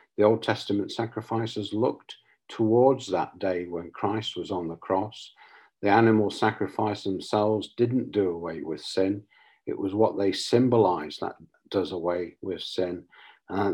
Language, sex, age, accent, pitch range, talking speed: English, male, 50-69, British, 100-120 Hz, 150 wpm